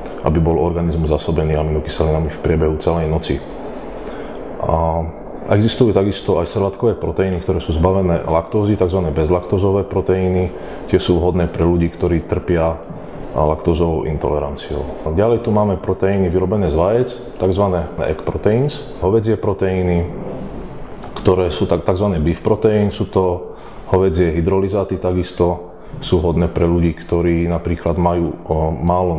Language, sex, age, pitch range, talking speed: Slovak, male, 30-49, 85-95 Hz, 130 wpm